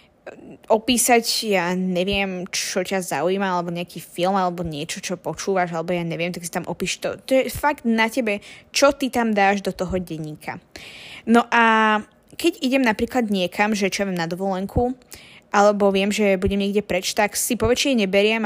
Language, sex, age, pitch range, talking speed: Slovak, female, 20-39, 185-220 Hz, 180 wpm